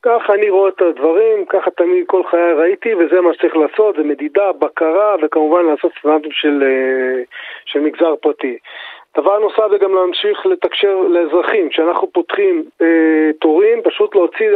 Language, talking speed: Hebrew, 155 wpm